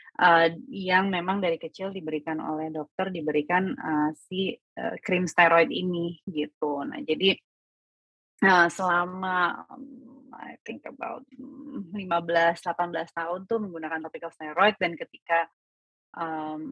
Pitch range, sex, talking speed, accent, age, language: 155-185 Hz, female, 120 wpm, native, 20-39, Indonesian